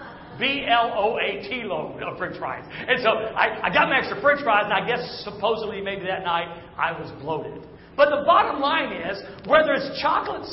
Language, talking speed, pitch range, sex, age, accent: English, 205 wpm, 200-275 Hz, male, 50-69, American